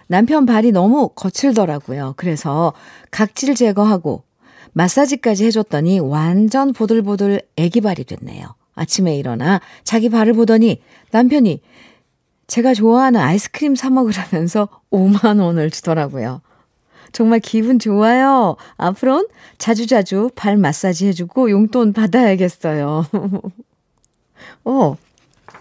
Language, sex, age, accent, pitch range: Korean, female, 40-59, native, 165-225 Hz